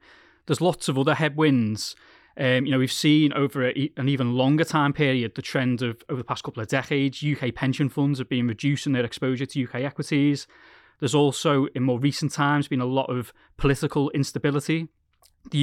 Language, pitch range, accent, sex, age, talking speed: English, 130-150 Hz, British, male, 20-39, 190 wpm